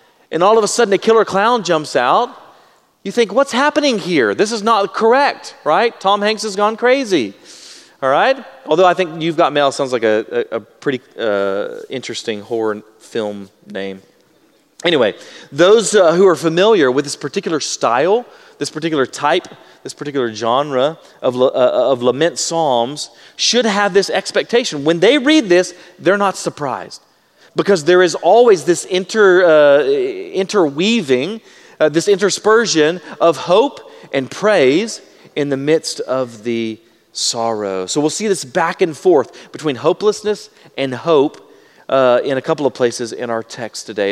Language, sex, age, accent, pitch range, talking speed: English, male, 30-49, American, 135-205 Hz, 160 wpm